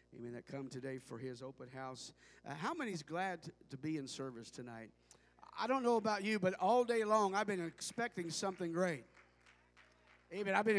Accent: American